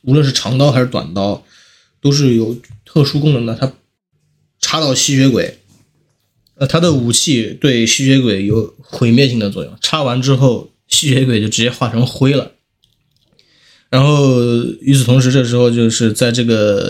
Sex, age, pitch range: male, 20-39, 110-140 Hz